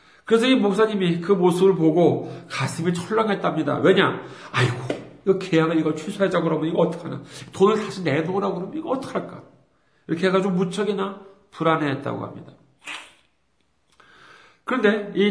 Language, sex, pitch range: Korean, male, 160-240 Hz